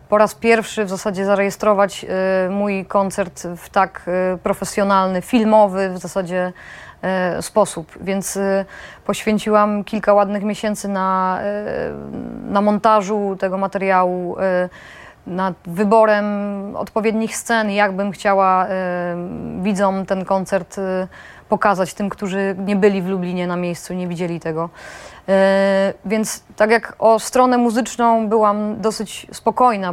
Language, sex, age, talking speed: Polish, female, 20-39, 115 wpm